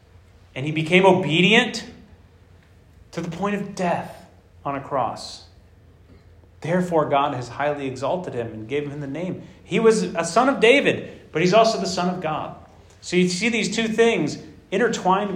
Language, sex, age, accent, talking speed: English, male, 30-49, American, 170 wpm